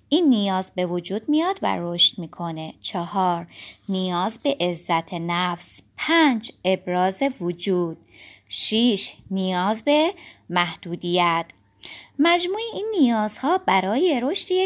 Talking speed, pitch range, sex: 105 wpm, 180-290 Hz, female